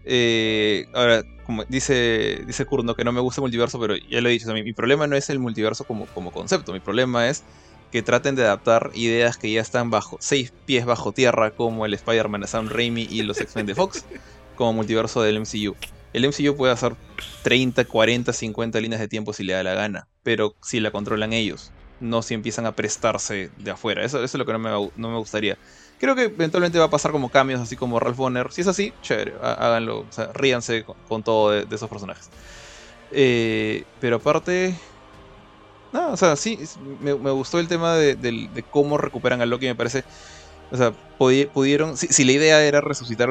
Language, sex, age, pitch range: Spanish, male, 20-39, 110-130 Hz